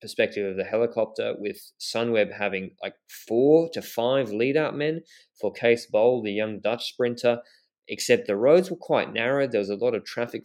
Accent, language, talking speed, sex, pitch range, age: Australian, English, 190 wpm, male, 105-130 Hz, 20-39